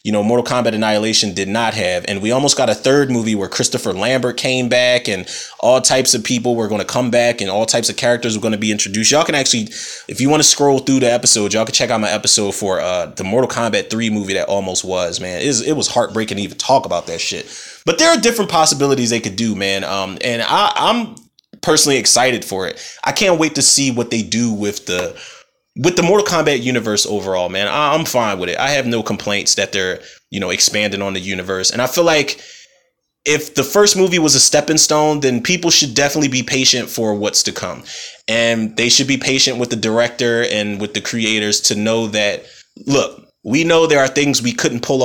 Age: 20-39